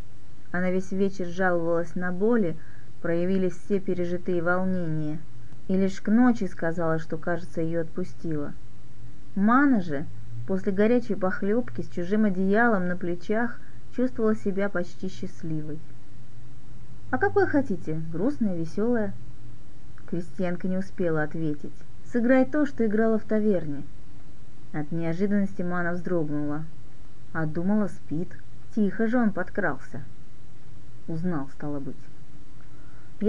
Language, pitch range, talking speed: Russian, 140-210 Hz, 110 wpm